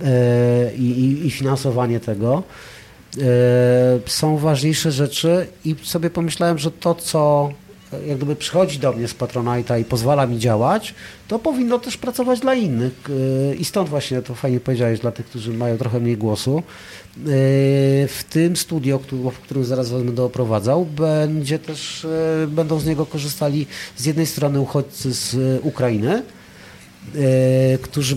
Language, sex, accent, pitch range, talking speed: Polish, male, native, 120-155 Hz, 140 wpm